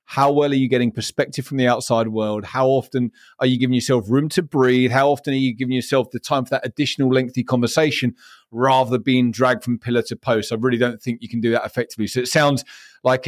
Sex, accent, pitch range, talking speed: male, British, 120-145 Hz, 240 wpm